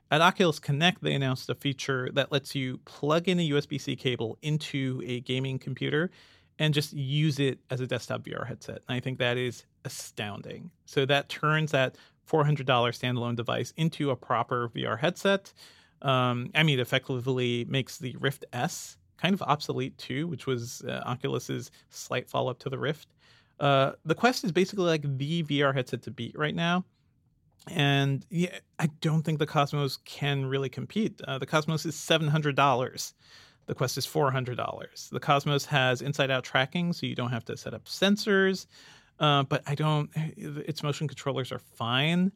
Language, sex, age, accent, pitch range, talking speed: English, male, 40-59, American, 130-155 Hz, 175 wpm